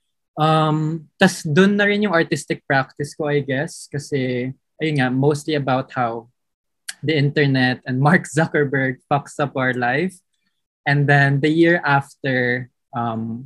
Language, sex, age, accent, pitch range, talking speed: Filipino, male, 20-39, native, 130-160 Hz, 135 wpm